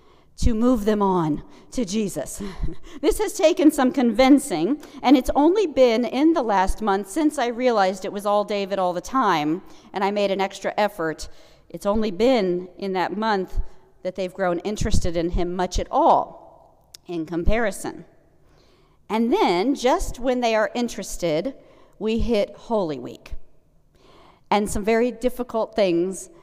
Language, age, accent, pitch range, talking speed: English, 50-69, American, 185-260 Hz, 155 wpm